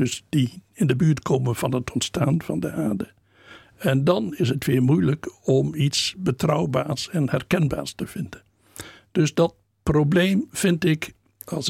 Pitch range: 130-165 Hz